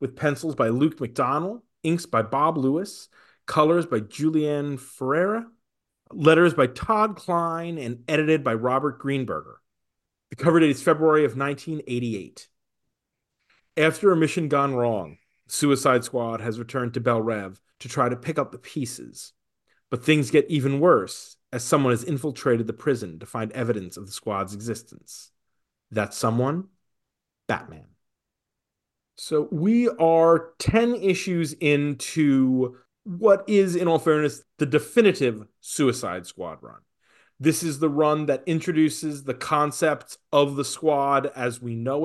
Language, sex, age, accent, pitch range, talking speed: English, male, 40-59, American, 120-155 Hz, 140 wpm